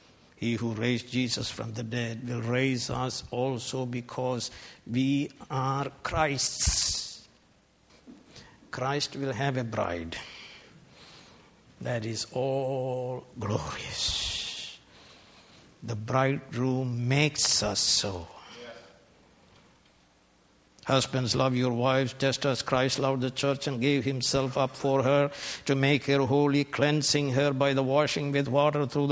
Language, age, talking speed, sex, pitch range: English, 60-79, 115 wpm, male, 120-135 Hz